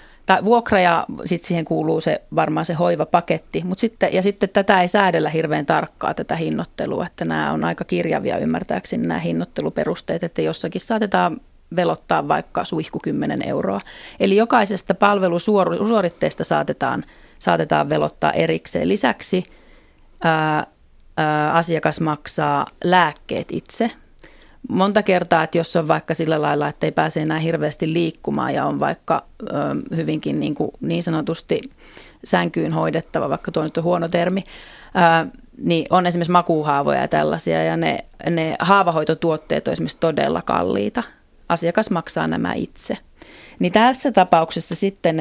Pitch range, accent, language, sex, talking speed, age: 155-185 Hz, native, Finnish, female, 135 wpm, 30-49